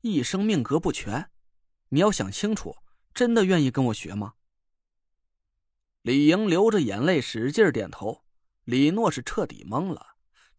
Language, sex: Chinese, male